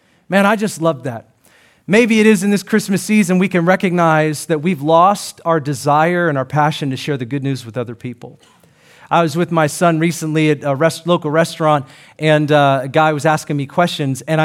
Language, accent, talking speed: English, American, 210 wpm